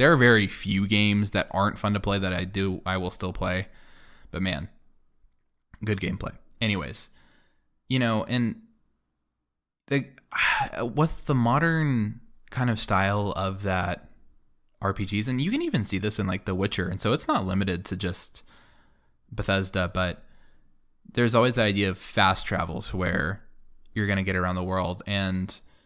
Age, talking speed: 20-39, 160 wpm